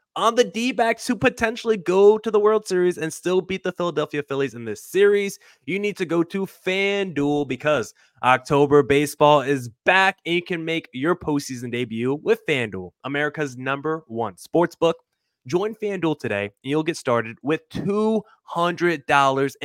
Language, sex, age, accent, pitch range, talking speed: English, male, 20-39, American, 125-170 Hz, 160 wpm